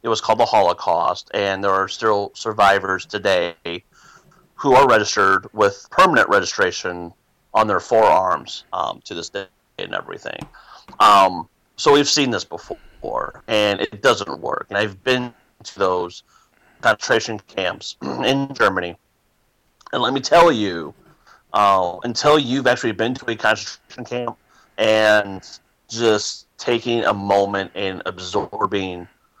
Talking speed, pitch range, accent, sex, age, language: 135 wpm, 95-115 Hz, American, male, 30-49, English